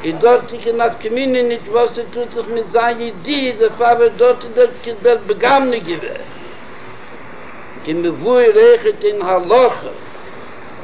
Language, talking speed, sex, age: Hebrew, 100 wpm, male, 70-89